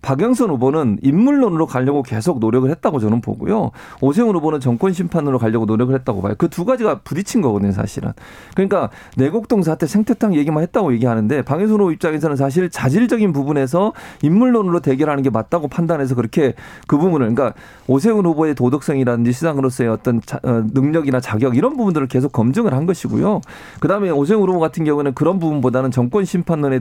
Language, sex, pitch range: Korean, male, 125-170 Hz